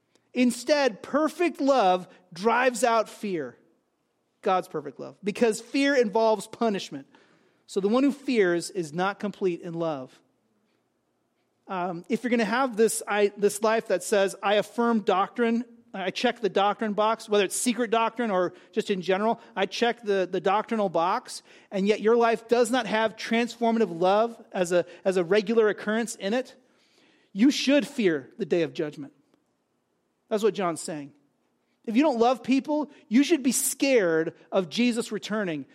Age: 30-49